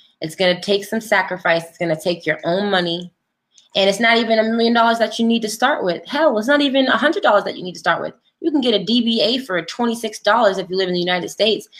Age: 20-39